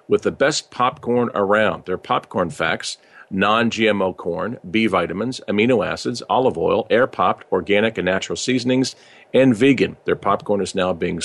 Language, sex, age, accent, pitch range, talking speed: English, male, 50-69, American, 95-125 Hz, 150 wpm